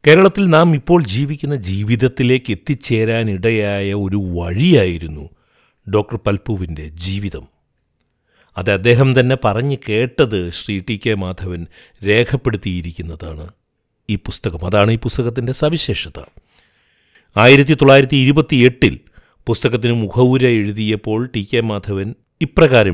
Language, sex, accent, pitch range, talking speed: Malayalam, male, native, 100-125 Hz, 90 wpm